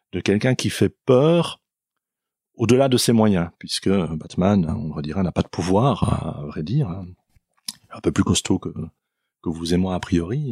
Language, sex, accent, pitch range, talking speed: French, male, French, 90-115 Hz, 195 wpm